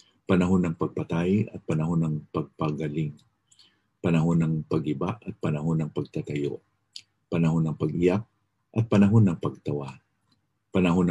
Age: 50-69